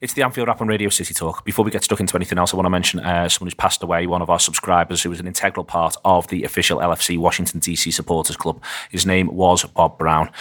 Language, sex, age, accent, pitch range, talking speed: English, male, 30-49, British, 90-105 Hz, 265 wpm